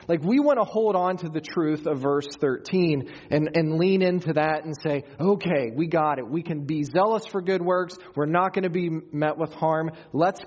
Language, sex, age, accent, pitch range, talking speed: English, male, 30-49, American, 125-165 Hz, 225 wpm